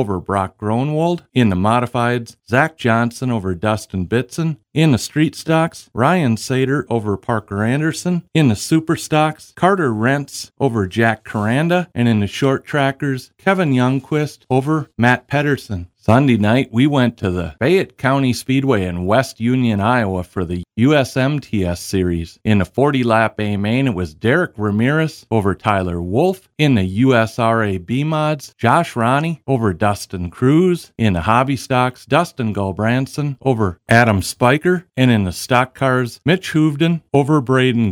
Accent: American